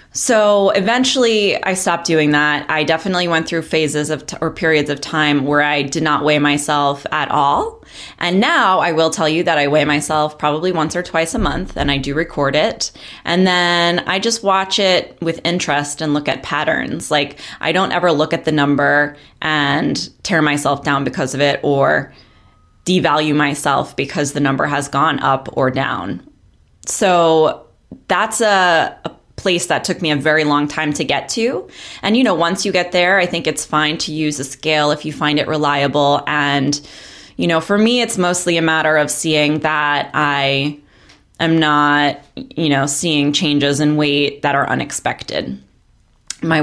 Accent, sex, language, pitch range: American, female, English, 145-165 Hz